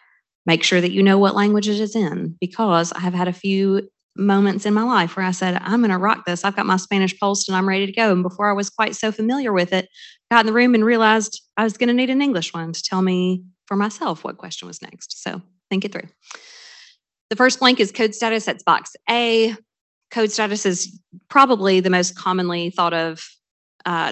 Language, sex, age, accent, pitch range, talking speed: English, female, 30-49, American, 170-210 Hz, 230 wpm